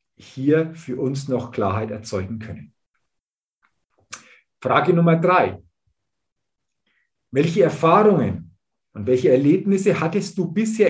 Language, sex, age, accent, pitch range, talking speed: German, male, 50-69, German, 130-185 Hz, 100 wpm